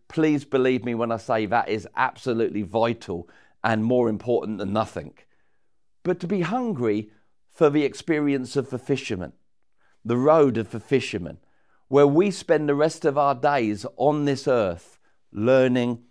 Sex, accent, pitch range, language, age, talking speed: male, British, 110-145 Hz, English, 50-69, 155 wpm